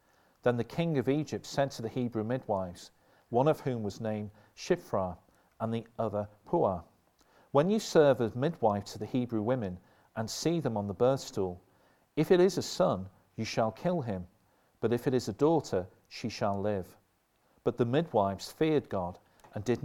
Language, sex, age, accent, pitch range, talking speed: English, male, 50-69, British, 100-135 Hz, 185 wpm